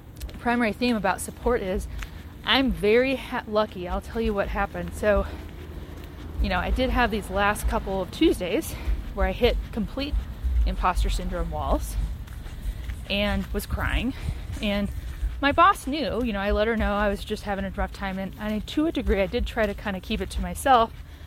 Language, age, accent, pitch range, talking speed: English, 30-49, American, 180-225 Hz, 190 wpm